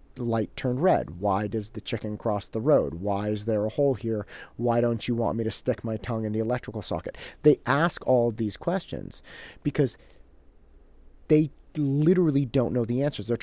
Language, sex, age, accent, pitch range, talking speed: English, male, 40-59, American, 105-140 Hz, 190 wpm